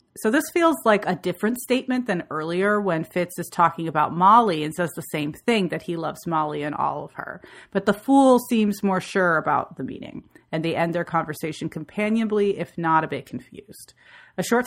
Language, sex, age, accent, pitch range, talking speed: English, female, 30-49, American, 170-205 Hz, 205 wpm